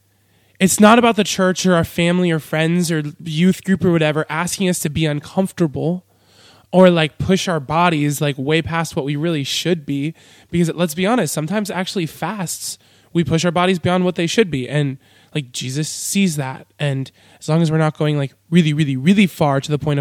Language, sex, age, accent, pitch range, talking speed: English, male, 20-39, American, 135-185 Hz, 205 wpm